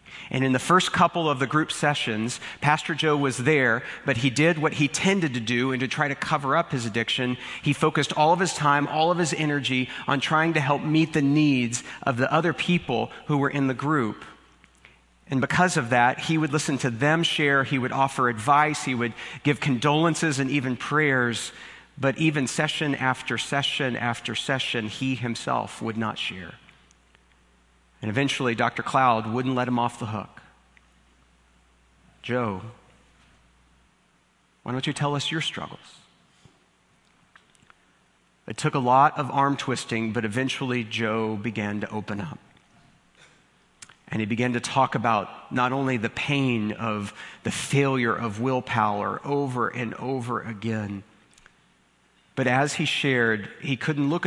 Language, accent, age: English, American, 40-59